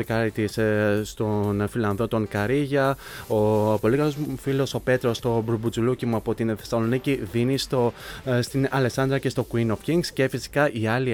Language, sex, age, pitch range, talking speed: Greek, male, 20-39, 105-130 Hz, 150 wpm